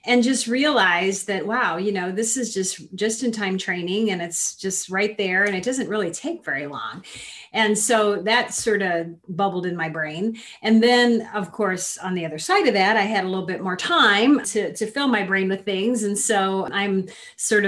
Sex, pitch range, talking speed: female, 175-215 Hz, 215 wpm